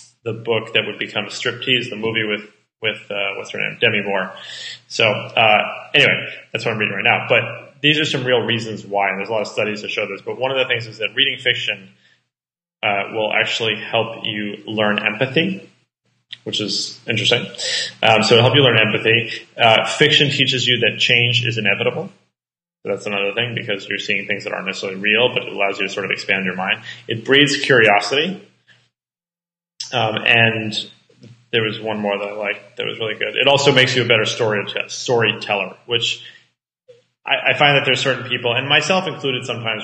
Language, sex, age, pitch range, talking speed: English, male, 20-39, 105-125 Hz, 200 wpm